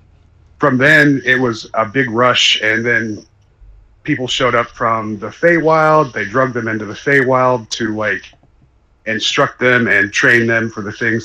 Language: English